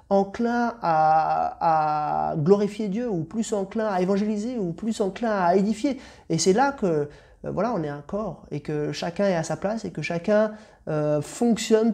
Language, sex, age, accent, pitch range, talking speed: French, male, 30-49, French, 155-210 Hz, 180 wpm